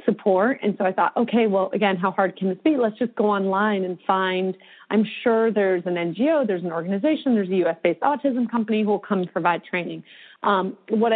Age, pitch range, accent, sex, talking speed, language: 30-49, 185-220 Hz, American, female, 210 wpm, English